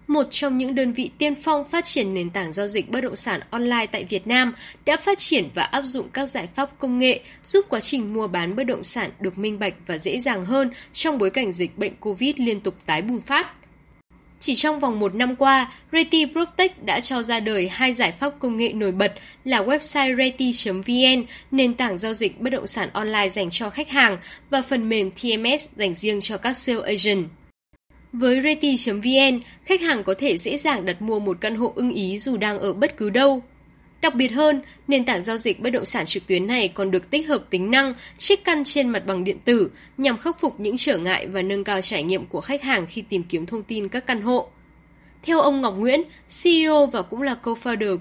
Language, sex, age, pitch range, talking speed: Vietnamese, female, 10-29, 200-275 Hz, 225 wpm